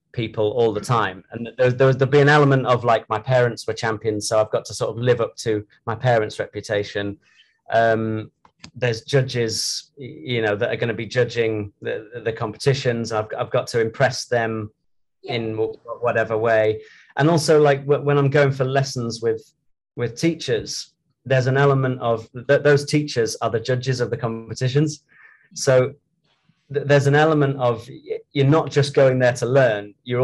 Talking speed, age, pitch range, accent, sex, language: 175 wpm, 30-49, 115-140 Hz, British, male, English